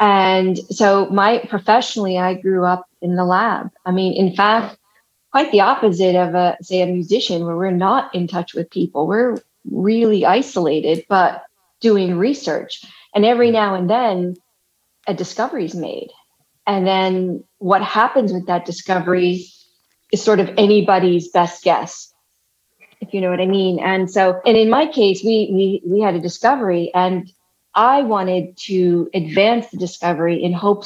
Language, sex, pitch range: English, female, 175-210 Hz